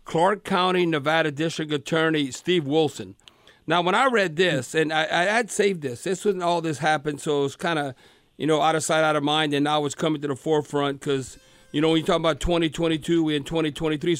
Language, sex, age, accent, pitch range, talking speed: English, male, 50-69, American, 155-185 Hz, 230 wpm